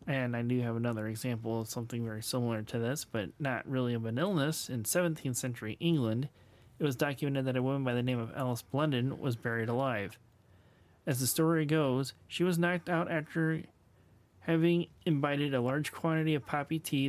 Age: 30-49